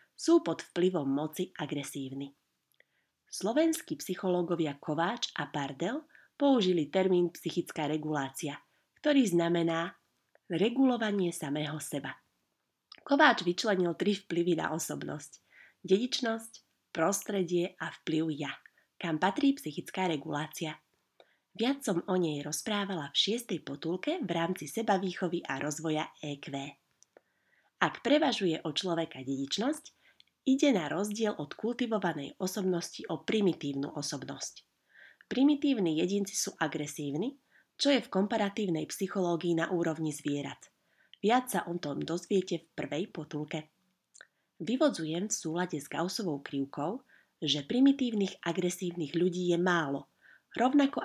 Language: Slovak